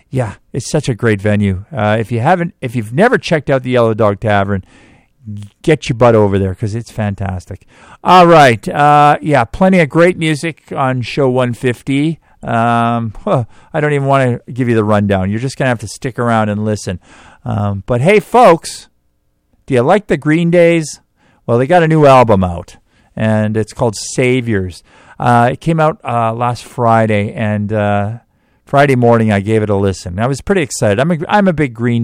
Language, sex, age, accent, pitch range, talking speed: English, male, 50-69, American, 100-140 Hz, 195 wpm